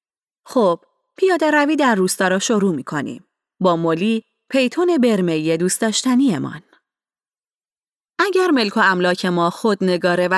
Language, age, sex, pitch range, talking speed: Persian, 30-49, female, 175-255 Hz, 140 wpm